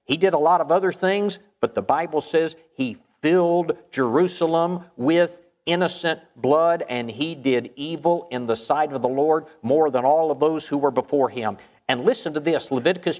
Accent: American